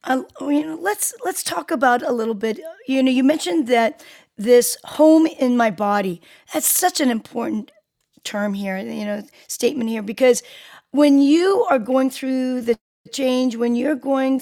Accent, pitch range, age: American, 235-285 Hz, 40-59